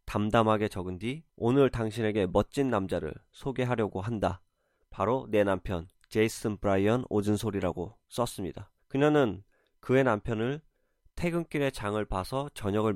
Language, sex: Korean, male